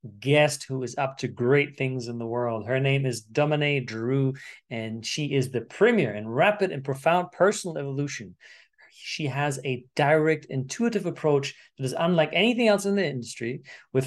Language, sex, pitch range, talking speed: English, male, 130-175 Hz, 175 wpm